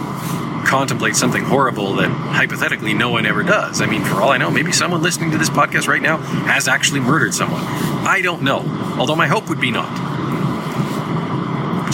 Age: 40-59